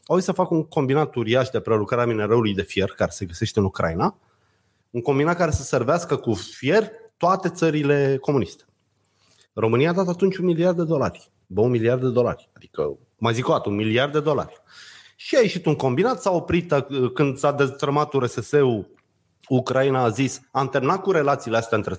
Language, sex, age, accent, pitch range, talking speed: Romanian, male, 30-49, native, 115-175 Hz, 185 wpm